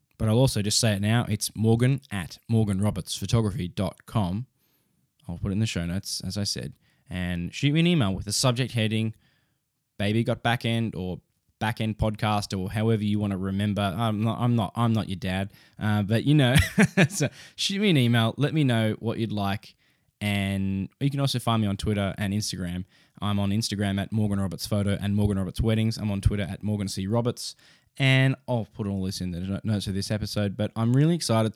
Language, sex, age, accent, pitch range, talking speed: English, male, 10-29, Australian, 95-115 Hz, 205 wpm